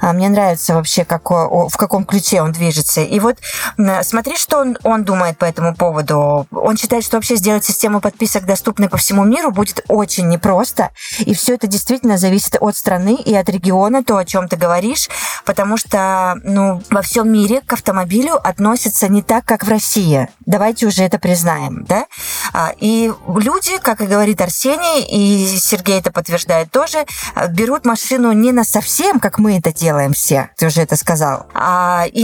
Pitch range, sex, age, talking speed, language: 180-235 Hz, female, 20-39, 170 wpm, Russian